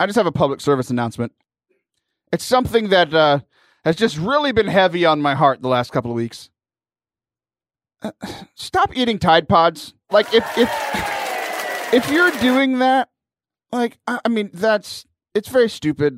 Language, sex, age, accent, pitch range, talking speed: English, male, 30-49, American, 130-220 Hz, 165 wpm